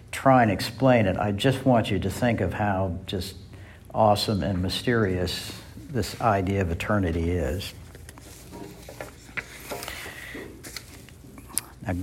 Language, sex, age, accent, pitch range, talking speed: English, male, 60-79, American, 95-120 Hz, 110 wpm